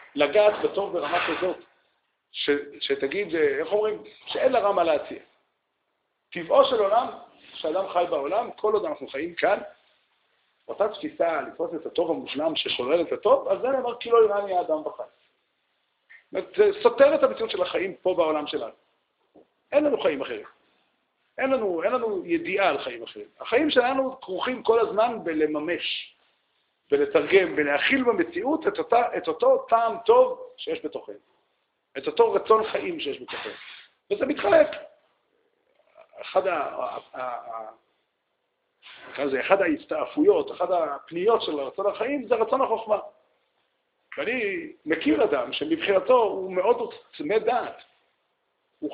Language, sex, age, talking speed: Hebrew, male, 50-69, 130 wpm